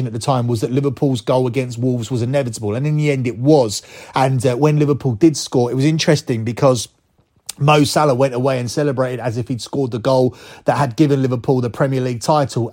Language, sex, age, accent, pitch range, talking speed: English, male, 30-49, British, 125-145 Hz, 220 wpm